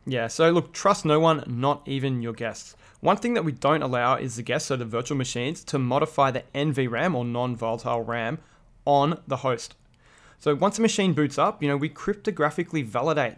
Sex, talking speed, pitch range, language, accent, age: male, 195 wpm, 125-155 Hz, English, Australian, 20-39